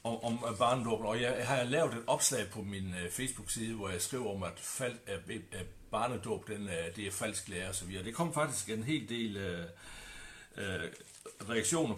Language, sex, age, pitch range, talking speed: Danish, male, 60-79, 100-130 Hz, 190 wpm